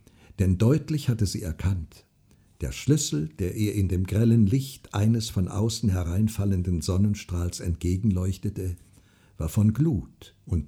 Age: 60-79